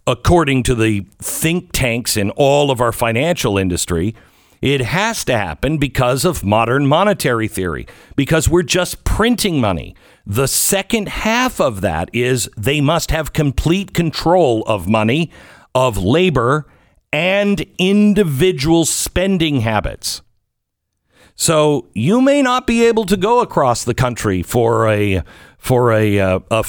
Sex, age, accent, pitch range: male, 50-69, American, 110-165 Hz